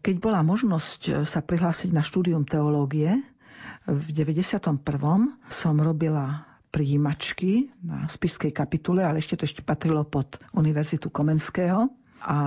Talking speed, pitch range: 120 wpm, 150-180 Hz